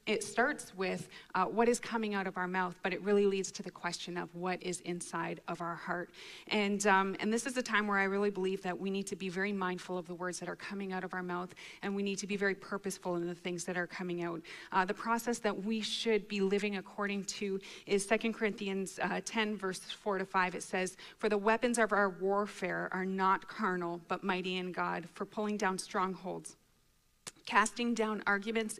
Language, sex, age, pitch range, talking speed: English, female, 30-49, 185-220 Hz, 225 wpm